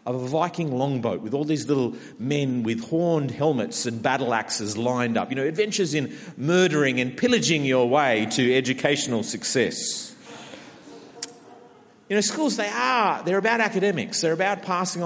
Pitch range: 130-190 Hz